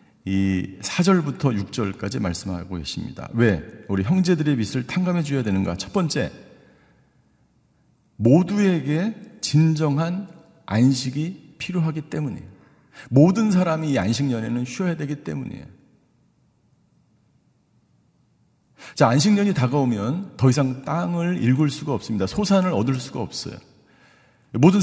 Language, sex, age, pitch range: Korean, male, 50-69, 125-175 Hz